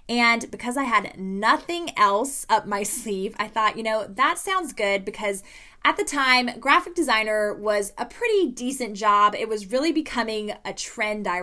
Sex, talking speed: female, 180 wpm